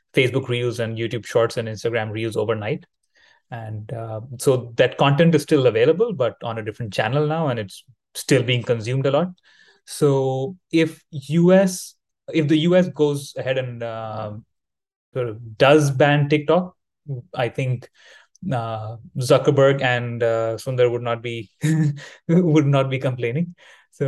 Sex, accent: male, Indian